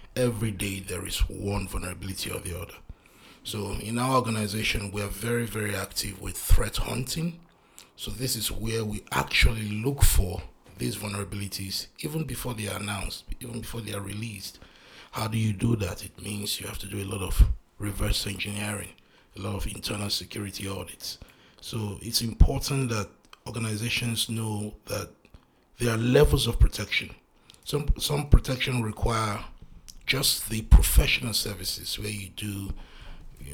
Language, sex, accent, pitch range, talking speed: English, male, Nigerian, 95-115 Hz, 155 wpm